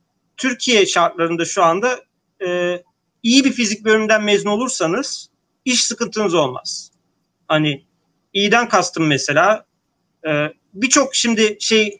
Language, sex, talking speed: Turkish, male, 110 wpm